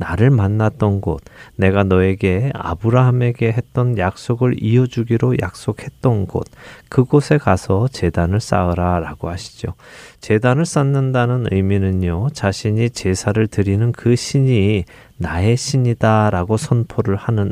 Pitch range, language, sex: 100-130 Hz, Korean, male